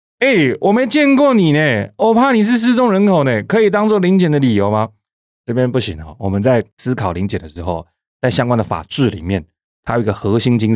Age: 30-49